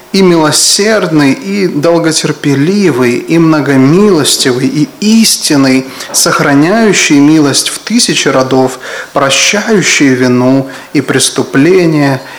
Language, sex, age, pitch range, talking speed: English, male, 30-49, 135-180 Hz, 80 wpm